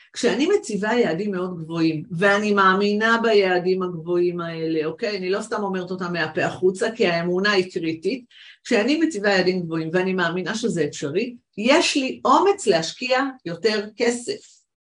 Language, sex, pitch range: Hebrew, female, 185-245 Hz